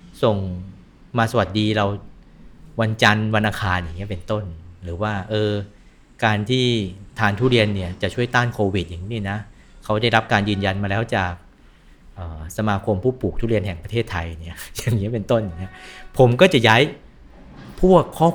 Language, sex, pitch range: Thai, male, 95-115 Hz